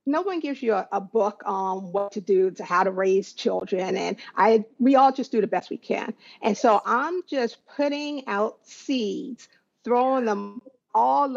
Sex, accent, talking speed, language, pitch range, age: female, American, 190 wpm, English, 210-260 Hz, 50-69